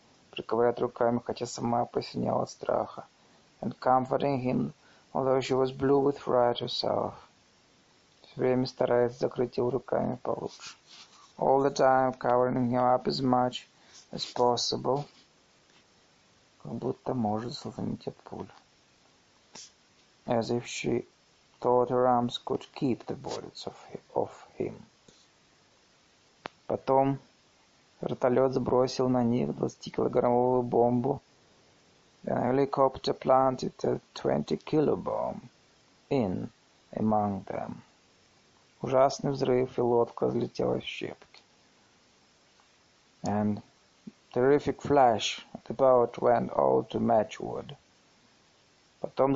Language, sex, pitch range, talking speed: Russian, male, 120-135 Hz, 70 wpm